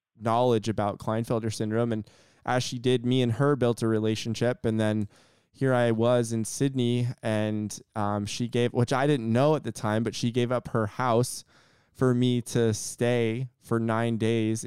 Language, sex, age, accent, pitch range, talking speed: English, male, 20-39, American, 110-125 Hz, 185 wpm